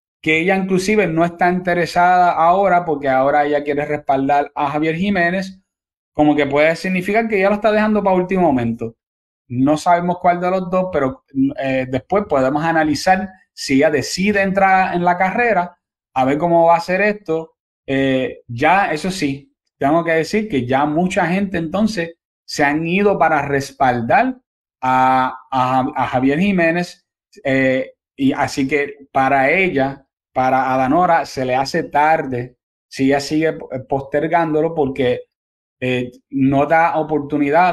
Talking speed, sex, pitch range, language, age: 150 wpm, male, 135-180 Hz, Spanish, 30-49